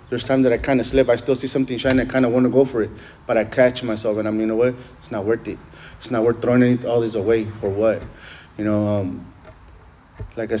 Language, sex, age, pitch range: English, male, 30-49, 110-130 Hz